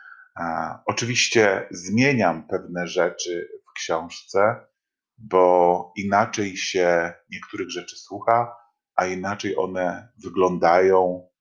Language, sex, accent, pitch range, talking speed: Polish, male, native, 90-120 Hz, 85 wpm